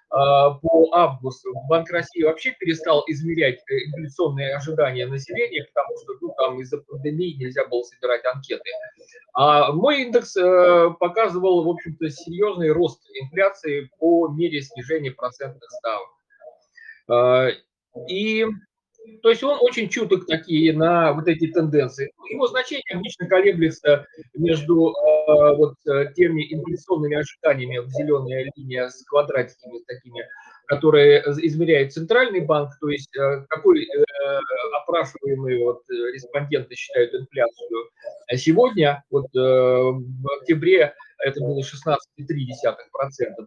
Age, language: 30-49, Russian